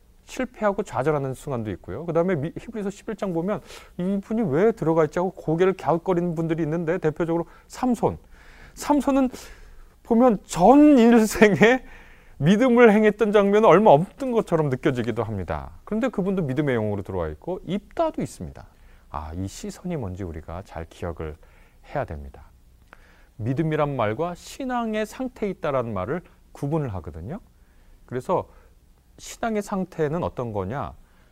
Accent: native